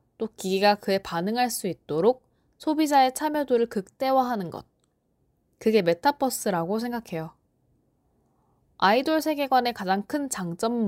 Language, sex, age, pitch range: Korean, female, 20-39, 185-280 Hz